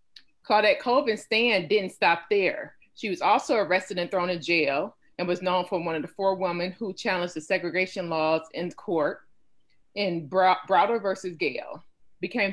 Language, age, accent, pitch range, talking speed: English, 30-49, American, 175-205 Hz, 170 wpm